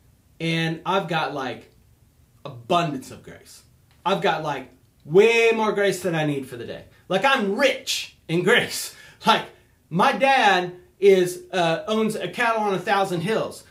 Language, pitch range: English, 175-255 Hz